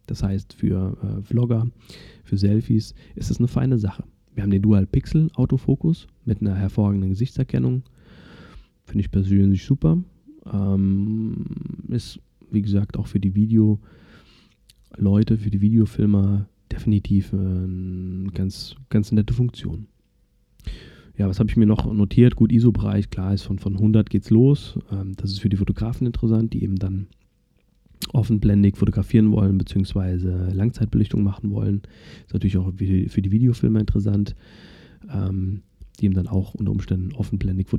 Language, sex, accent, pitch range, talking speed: German, male, German, 100-120 Hz, 150 wpm